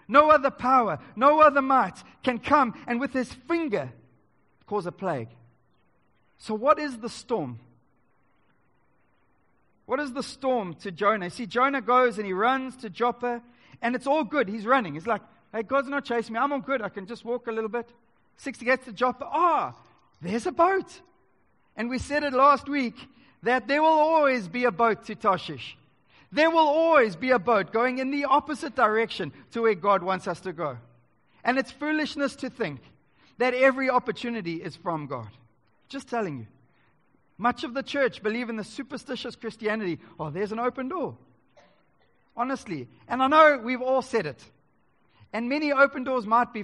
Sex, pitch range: male, 180-265 Hz